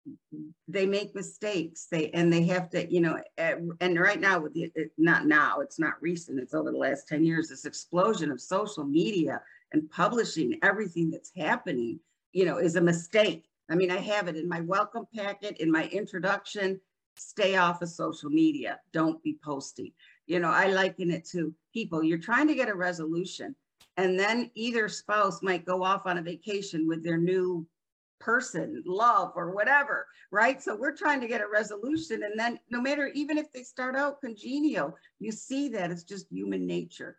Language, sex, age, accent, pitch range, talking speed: English, female, 50-69, American, 170-225 Hz, 190 wpm